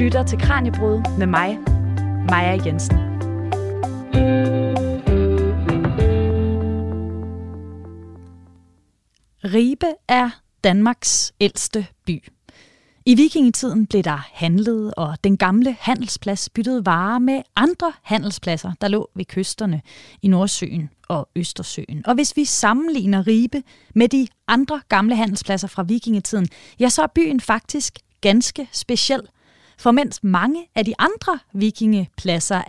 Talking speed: 110 wpm